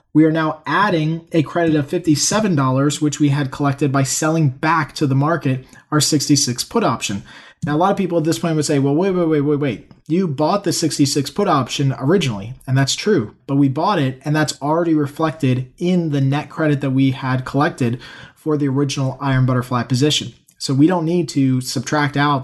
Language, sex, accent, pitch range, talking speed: English, male, American, 135-160 Hz, 205 wpm